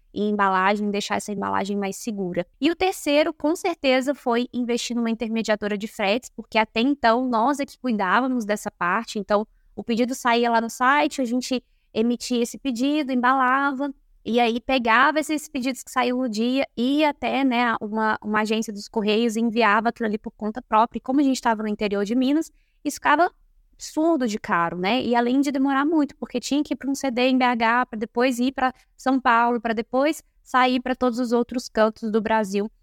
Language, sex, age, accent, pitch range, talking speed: Portuguese, female, 10-29, Brazilian, 215-255 Hz, 200 wpm